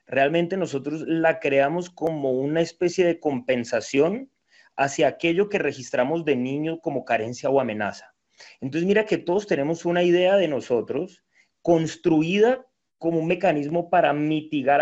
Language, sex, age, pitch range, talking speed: Spanish, male, 30-49, 135-170 Hz, 140 wpm